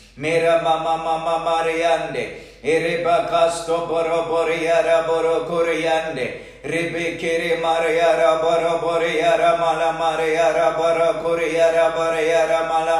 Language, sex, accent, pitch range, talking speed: English, male, Indian, 165-170 Hz, 140 wpm